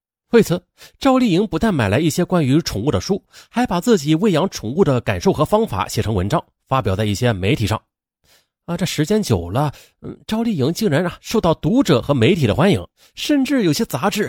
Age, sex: 30-49, male